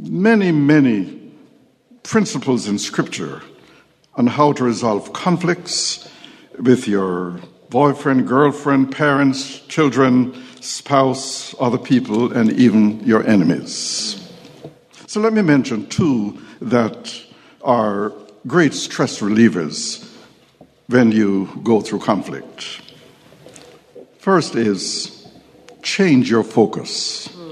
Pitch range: 130-180 Hz